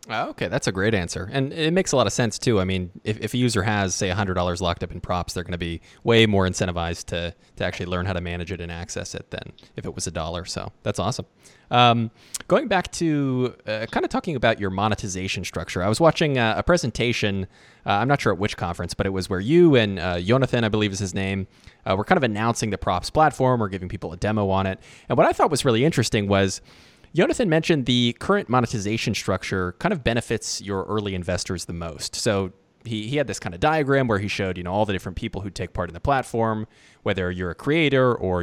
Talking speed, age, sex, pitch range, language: 245 wpm, 20-39, male, 95-120 Hz, English